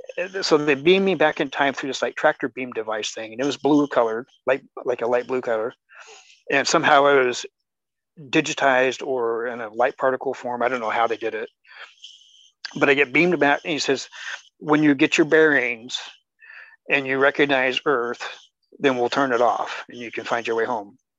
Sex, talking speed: male, 205 wpm